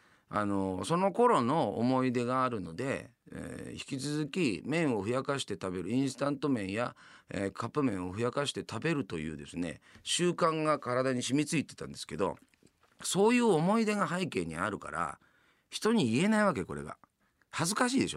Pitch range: 100-155 Hz